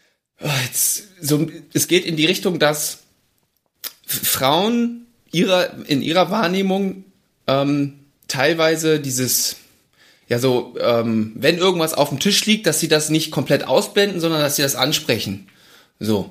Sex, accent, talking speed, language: male, German, 135 wpm, German